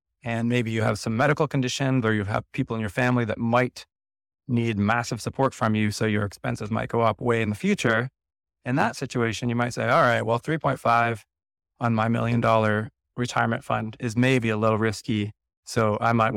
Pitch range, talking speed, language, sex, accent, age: 110-125 Hz, 200 wpm, English, male, American, 30-49